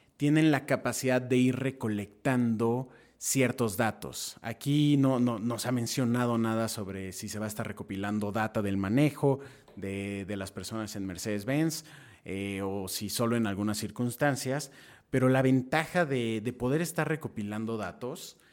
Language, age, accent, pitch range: Spanish, 30-49, Mexican, 105-130 Hz